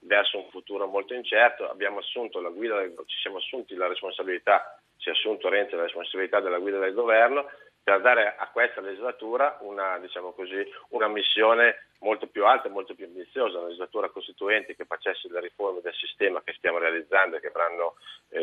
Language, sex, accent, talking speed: Italian, male, native, 180 wpm